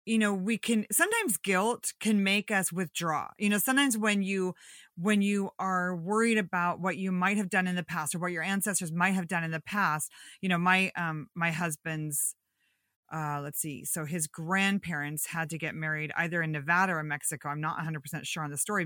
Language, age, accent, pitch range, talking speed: English, 30-49, American, 165-205 Hz, 220 wpm